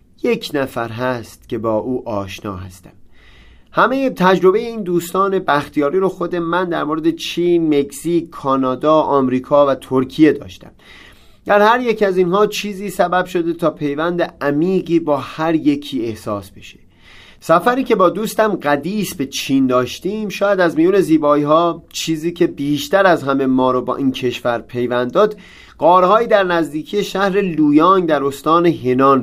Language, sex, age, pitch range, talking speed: Persian, male, 30-49, 130-180 Hz, 150 wpm